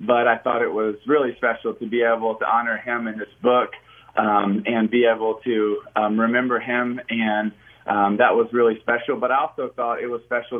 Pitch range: 115-130 Hz